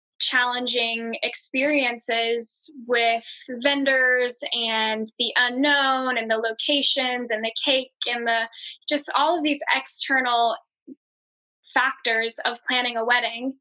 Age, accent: 10-29, American